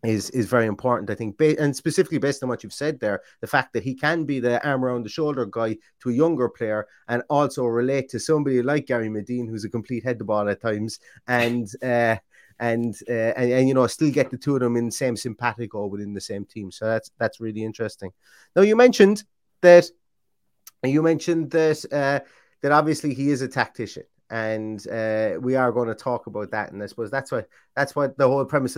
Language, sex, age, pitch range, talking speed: English, male, 30-49, 115-140 Hz, 220 wpm